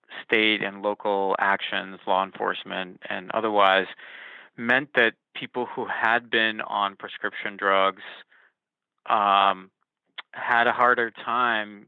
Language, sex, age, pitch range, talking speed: English, male, 30-49, 100-115 Hz, 110 wpm